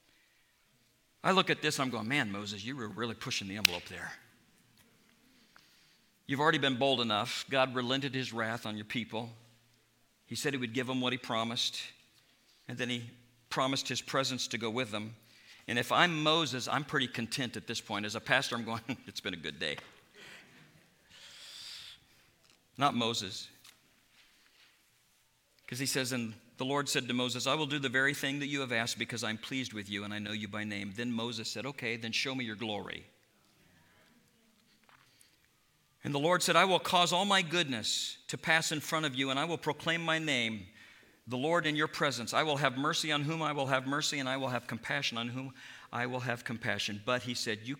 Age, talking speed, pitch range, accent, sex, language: 50-69, 200 wpm, 115-145 Hz, American, male, English